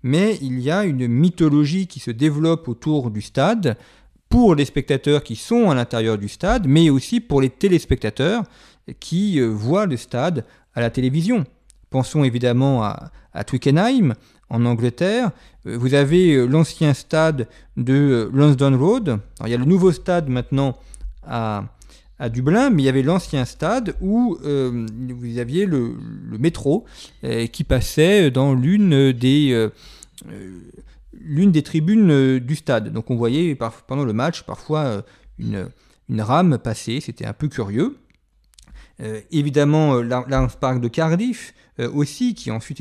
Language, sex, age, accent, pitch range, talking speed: French, male, 40-59, French, 120-160 Hz, 165 wpm